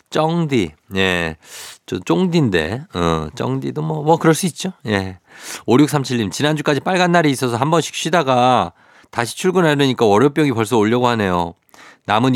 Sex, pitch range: male, 105-150 Hz